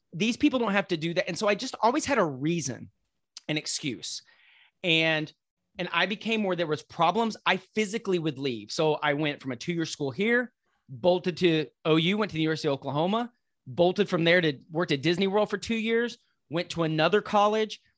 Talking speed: 205 wpm